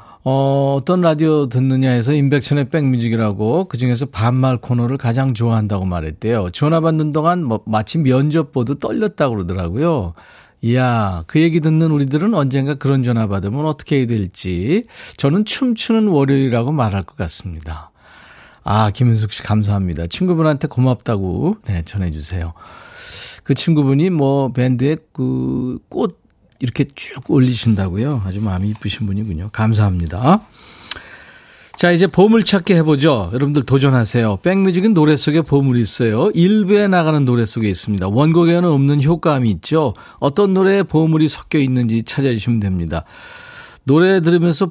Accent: native